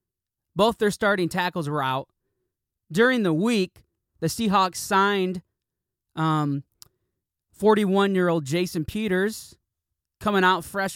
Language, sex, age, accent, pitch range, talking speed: English, male, 20-39, American, 170-235 Hz, 105 wpm